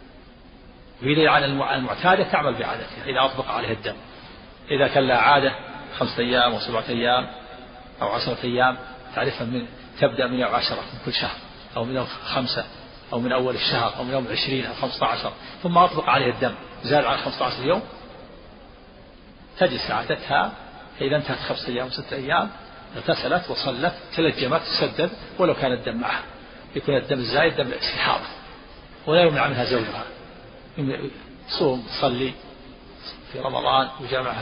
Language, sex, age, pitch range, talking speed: Arabic, male, 40-59, 125-155 Hz, 145 wpm